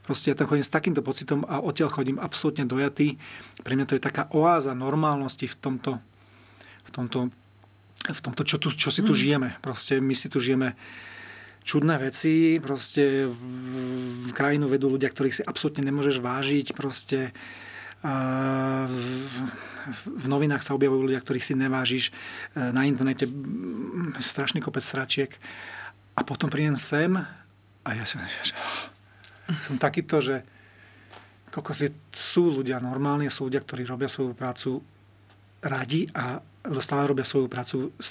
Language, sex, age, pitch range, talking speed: Slovak, male, 40-59, 125-140 Hz, 145 wpm